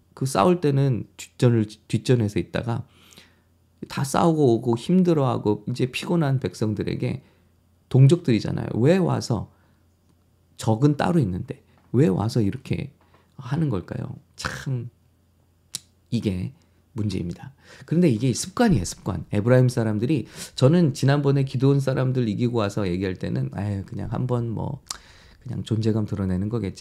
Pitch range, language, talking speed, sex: 100-145 Hz, English, 105 wpm, male